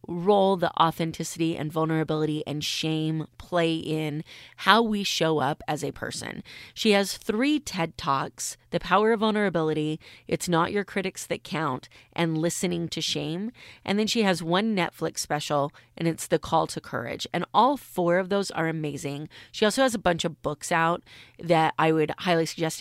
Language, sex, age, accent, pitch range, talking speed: English, female, 30-49, American, 150-175 Hz, 180 wpm